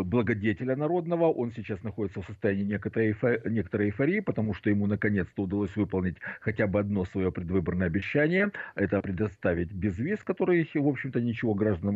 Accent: native